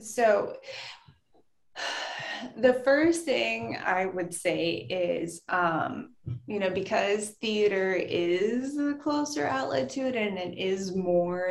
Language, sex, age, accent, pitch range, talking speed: English, female, 20-39, American, 165-190 Hz, 120 wpm